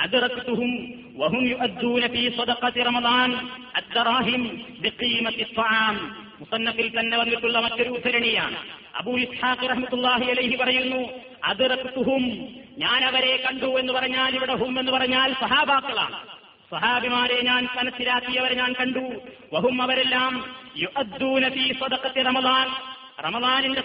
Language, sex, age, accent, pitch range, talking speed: Malayalam, male, 40-59, native, 230-260 Hz, 105 wpm